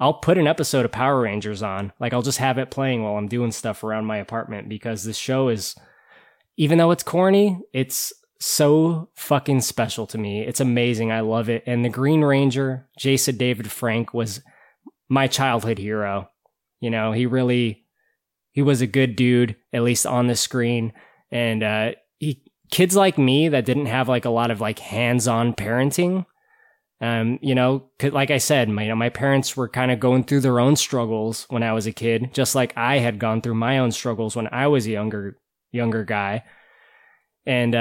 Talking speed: 195 wpm